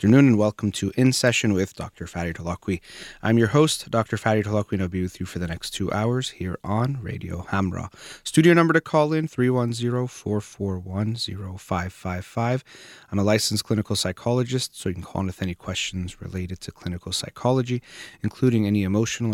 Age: 30-49